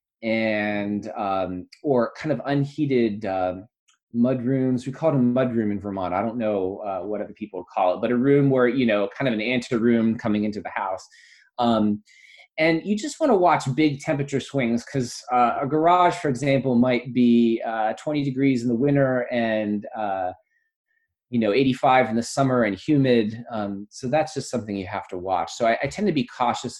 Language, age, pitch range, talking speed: English, 30-49, 110-145 Hz, 200 wpm